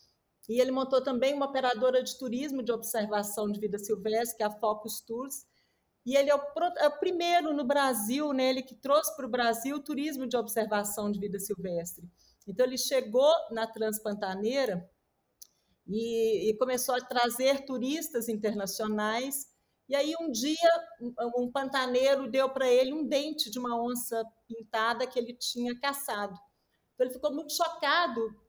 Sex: female